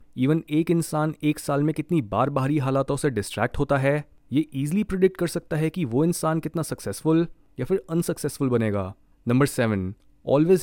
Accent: native